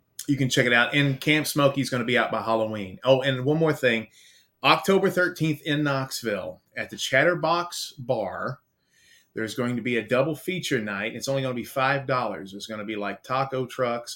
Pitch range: 105-135 Hz